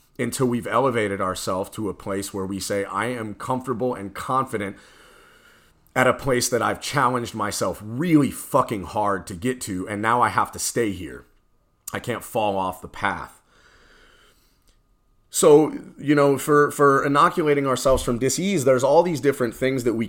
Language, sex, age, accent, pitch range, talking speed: English, male, 30-49, American, 105-135 Hz, 170 wpm